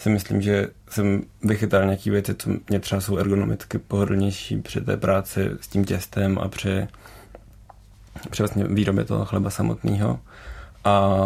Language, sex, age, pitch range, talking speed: Czech, male, 30-49, 95-105 Hz, 150 wpm